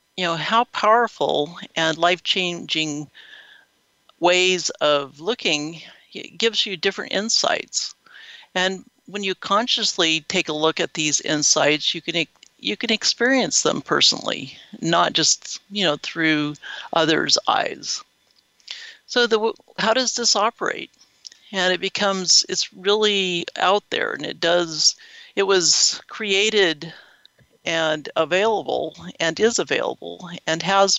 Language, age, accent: English, 60-79, American